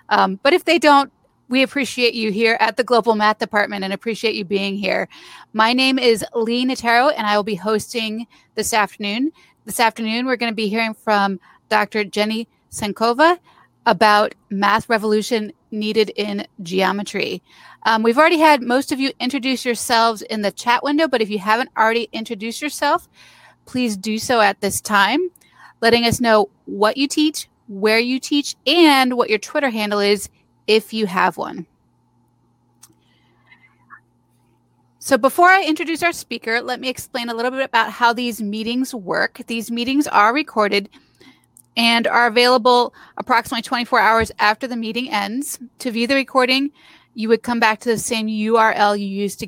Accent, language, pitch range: American, English, 210-255 Hz